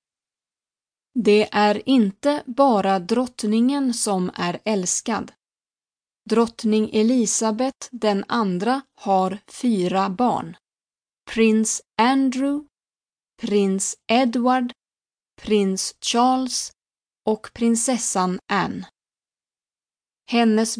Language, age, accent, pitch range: Spanish, 30-49, Swedish, 195-245 Hz